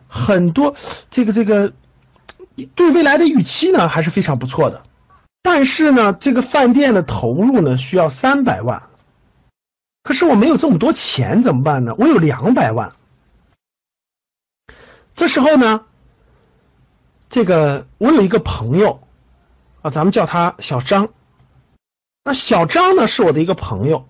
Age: 50-69